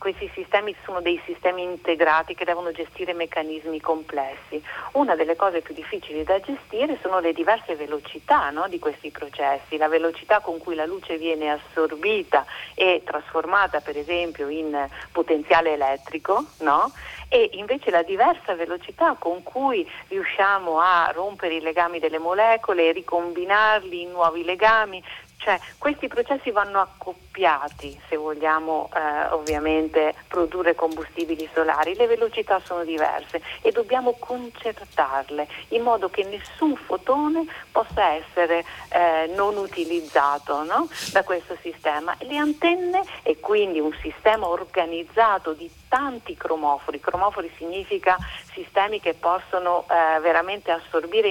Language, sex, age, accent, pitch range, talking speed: Italian, female, 40-59, native, 160-215 Hz, 130 wpm